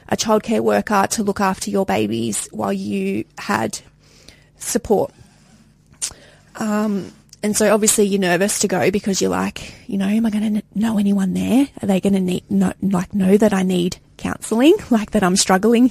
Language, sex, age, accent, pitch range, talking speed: English, female, 20-39, Australian, 190-225 Hz, 170 wpm